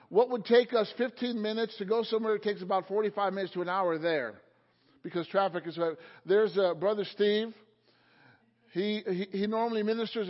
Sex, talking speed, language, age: male, 175 wpm, English, 50-69